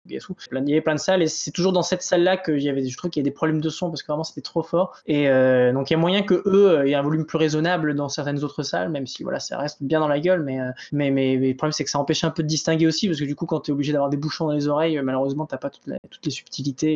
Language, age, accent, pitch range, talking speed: French, 20-39, French, 145-175 Hz, 345 wpm